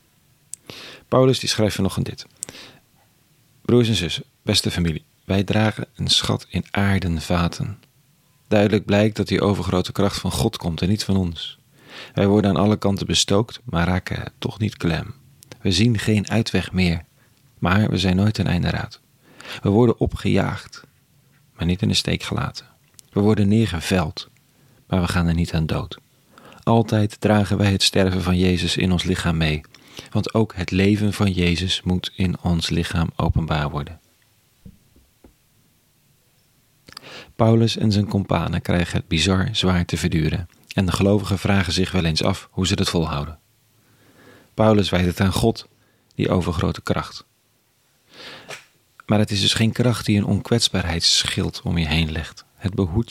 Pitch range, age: 90-115 Hz, 40-59